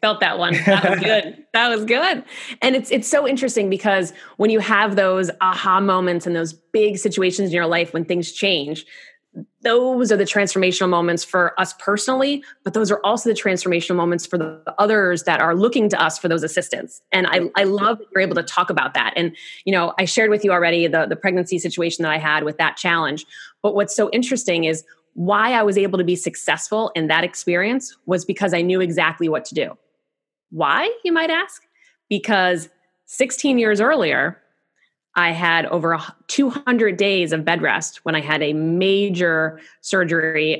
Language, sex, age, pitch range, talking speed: English, female, 20-39, 165-205 Hz, 195 wpm